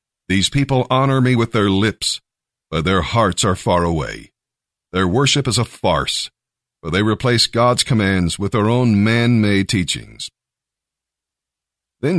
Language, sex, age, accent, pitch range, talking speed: English, male, 50-69, American, 95-120 Hz, 145 wpm